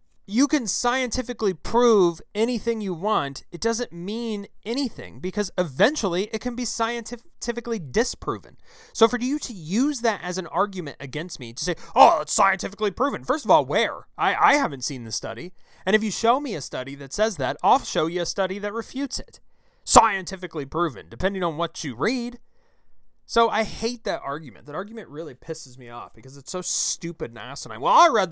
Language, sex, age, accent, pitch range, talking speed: English, male, 30-49, American, 135-225 Hz, 190 wpm